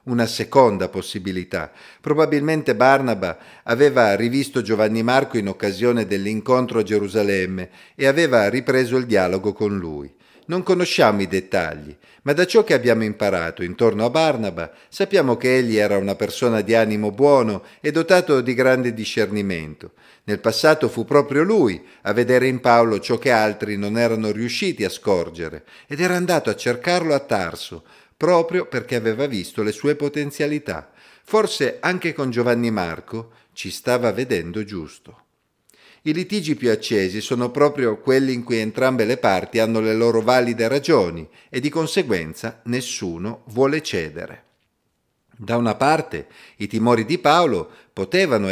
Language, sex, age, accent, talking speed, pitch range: Italian, male, 50-69, native, 145 wpm, 105-140 Hz